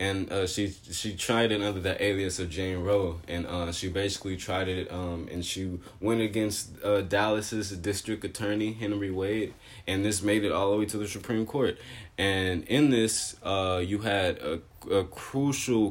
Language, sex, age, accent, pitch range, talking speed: English, male, 20-39, American, 90-110 Hz, 185 wpm